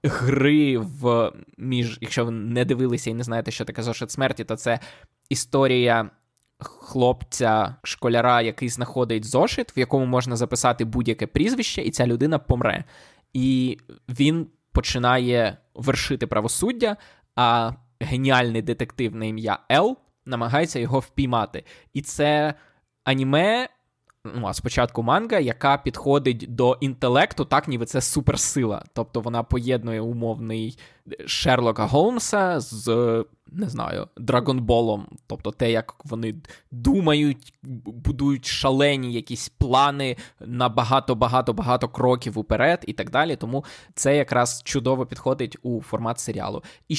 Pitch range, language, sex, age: 115-135 Hz, Ukrainian, male, 20-39